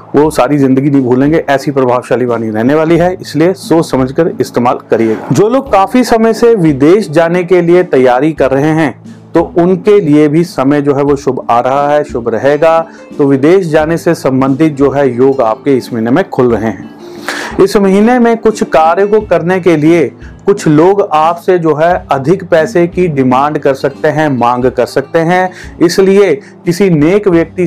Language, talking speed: Hindi, 185 wpm